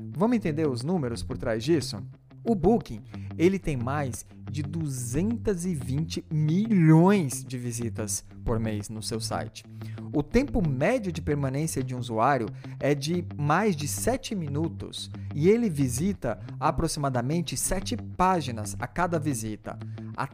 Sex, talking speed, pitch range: male, 135 wpm, 115-180 Hz